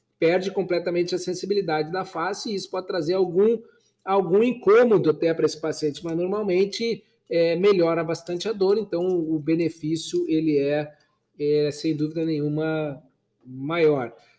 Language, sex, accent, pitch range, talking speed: Portuguese, male, Brazilian, 160-200 Hz, 140 wpm